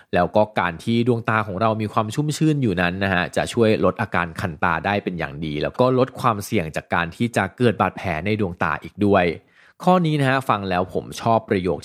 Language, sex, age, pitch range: Thai, male, 20-39, 90-115 Hz